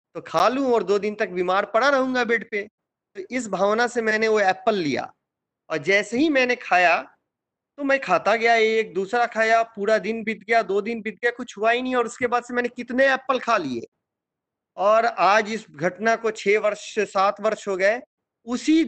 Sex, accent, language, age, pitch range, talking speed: male, native, Hindi, 40-59, 180-225 Hz, 205 wpm